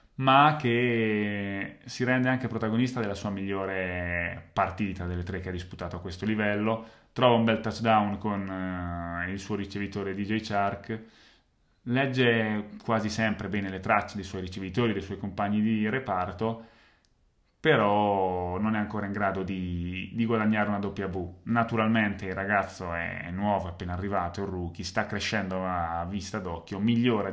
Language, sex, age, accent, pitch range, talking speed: Italian, male, 30-49, native, 90-110 Hz, 155 wpm